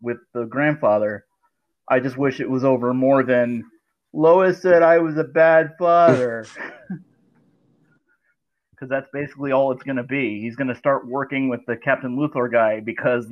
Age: 30-49